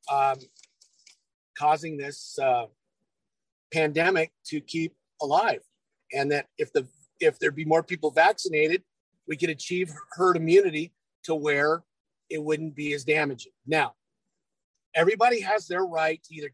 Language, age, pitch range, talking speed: English, 50-69, 150-180 Hz, 135 wpm